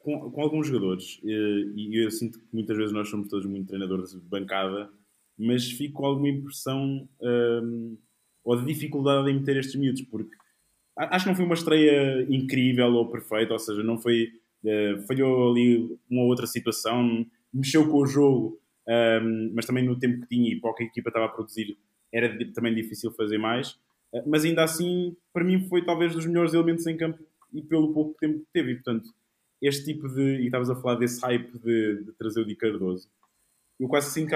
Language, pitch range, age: Portuguese, 115-150 Hz, 20-39